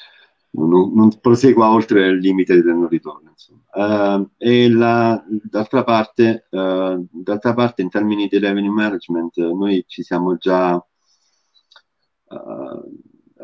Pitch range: 80-100 Hz